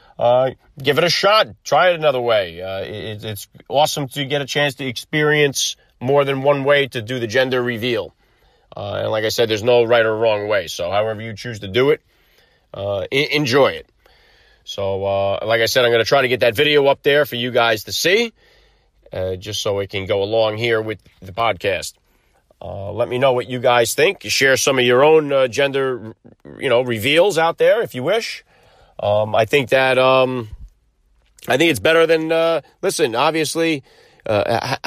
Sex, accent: male, American